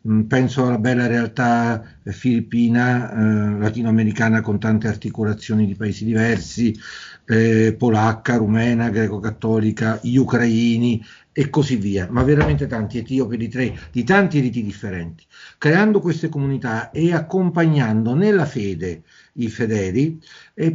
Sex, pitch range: male, 115-145 Hz